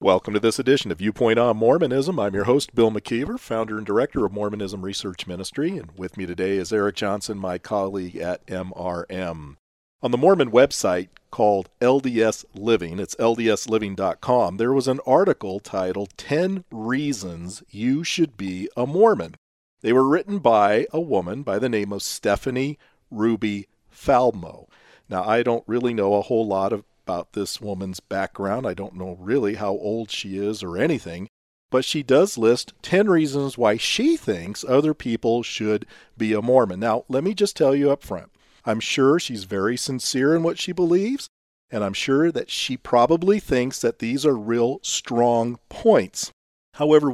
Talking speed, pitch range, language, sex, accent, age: 170 wpm, 100-140 Hz, English, male, American, 40-59